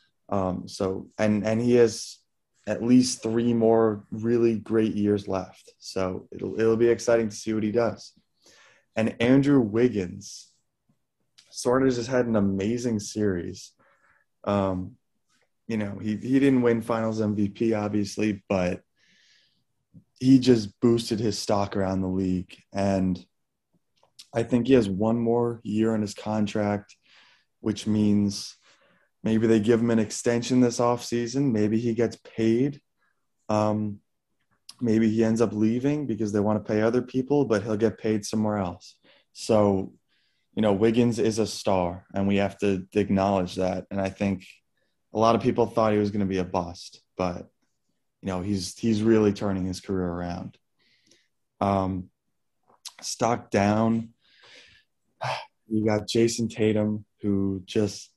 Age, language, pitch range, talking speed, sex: 20-39, English, 100-115 Hz, 150 wpm, male